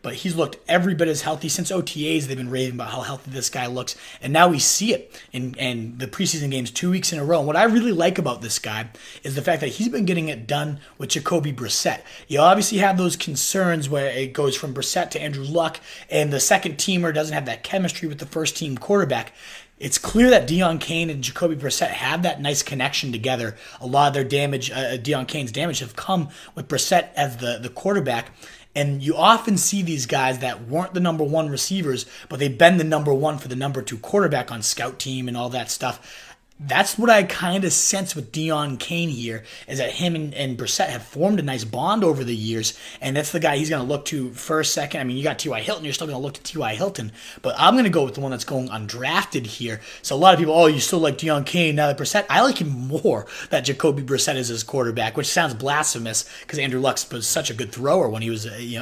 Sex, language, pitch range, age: male, English, 130-170 Hz, 30-49